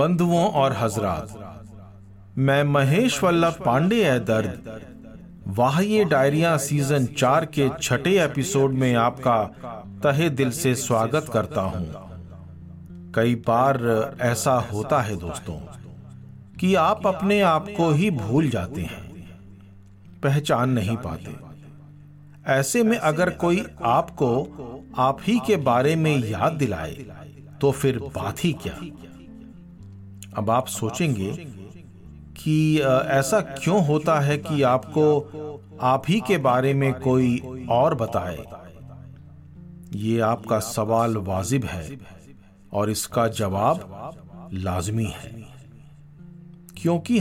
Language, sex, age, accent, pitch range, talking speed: Hindi, male, 50-69, native, 105-150 Hz, 110 wpm